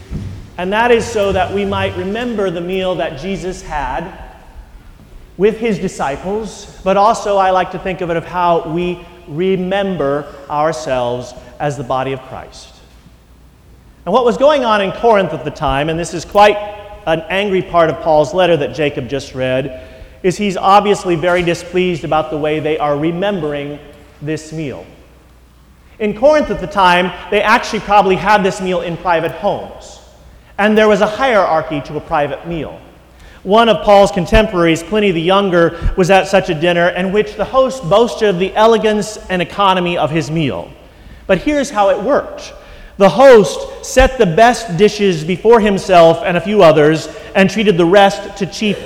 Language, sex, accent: English, male, American